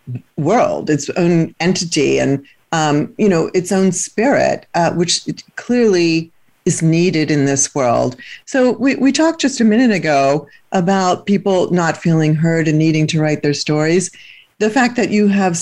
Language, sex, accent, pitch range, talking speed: English, female, American, 160-210 Hz, 165 wpm